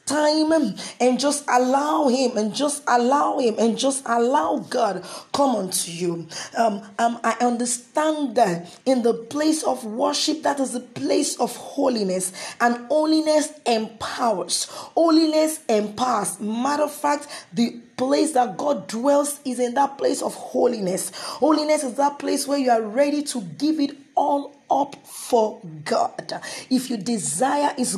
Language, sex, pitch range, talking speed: English, female, 235-290 Hz, 150 wpm